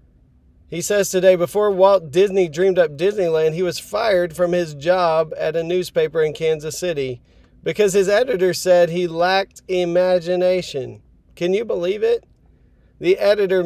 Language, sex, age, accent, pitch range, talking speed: English, male, 40-59, American, 150-180 Hz, 150 wpm